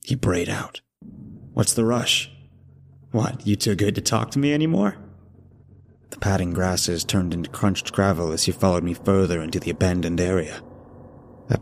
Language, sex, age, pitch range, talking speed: English, male, 30-49, 95-120 Hz, 165 wpm